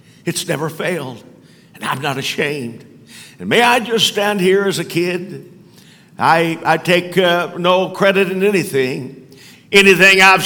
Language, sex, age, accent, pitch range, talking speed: English, male, 50-69, American, 185-240 Hz, 150 wpm